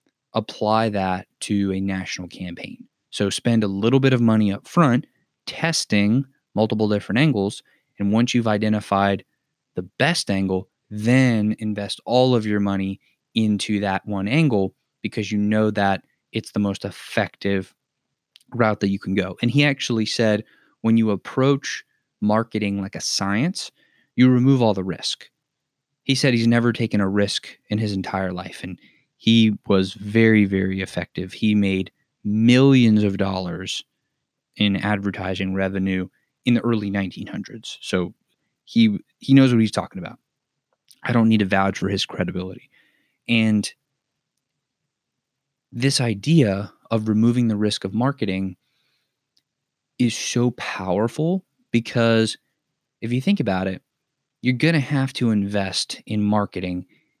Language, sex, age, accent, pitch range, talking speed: English, male, 20-39, American, 100-120 Hz, 145 wpm